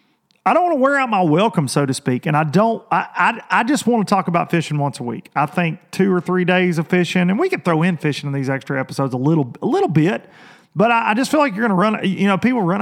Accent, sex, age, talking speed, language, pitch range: American, male, 40-59, 295 wpm, English, 155-210 Hz